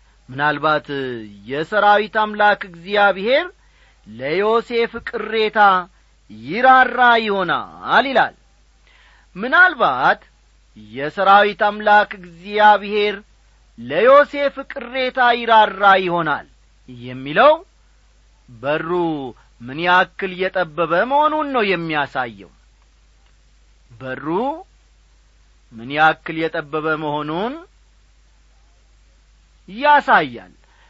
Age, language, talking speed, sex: 40-59, Amharic, 60 wpm, male